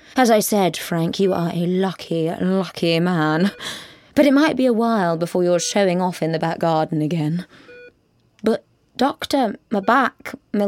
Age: 20-39